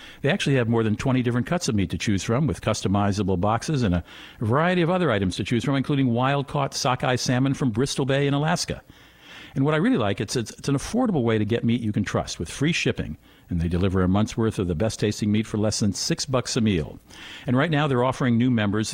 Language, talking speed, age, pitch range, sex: English, 245 wpm, 60-79, 100-140 Hz, male